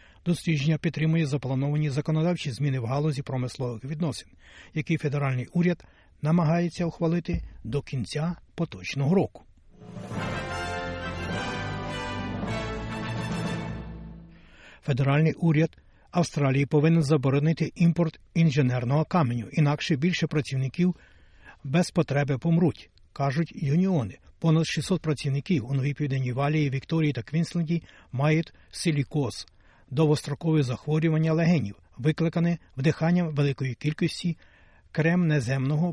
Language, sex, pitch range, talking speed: Ukrainian, male, 130-165 Hz, 90 wpm